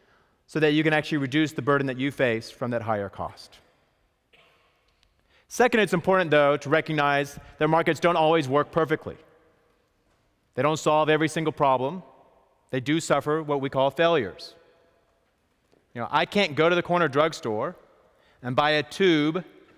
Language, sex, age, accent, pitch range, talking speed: English, male, 30-49, American, 130-160 Hz, 160 wpm